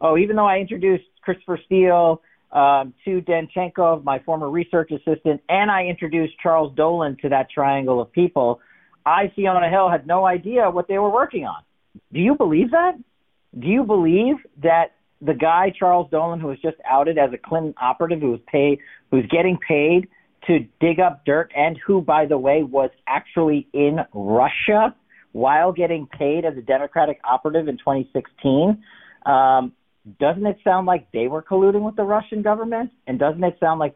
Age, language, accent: 50-69, English, American